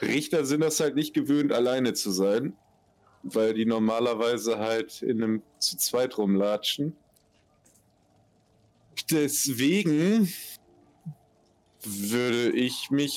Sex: male